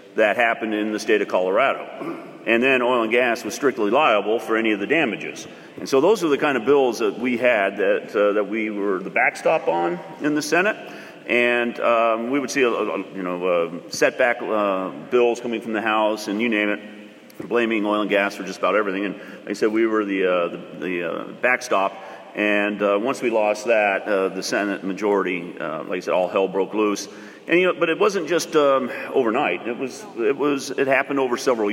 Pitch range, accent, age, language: 100-115 Hz, American, 40-59, English